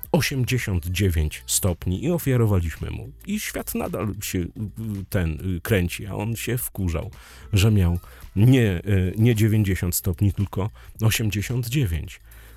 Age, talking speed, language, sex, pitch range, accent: 40-59, 110 wpm, Polish, male, 90-120 Hz, native